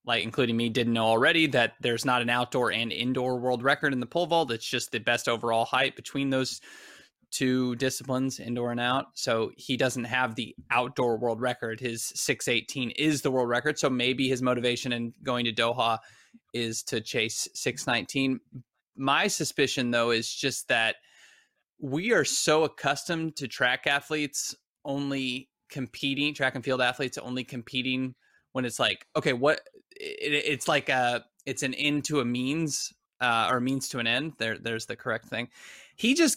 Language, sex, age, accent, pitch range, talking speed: English, male, 20-39, American, 120-150 Hz, 180 wpm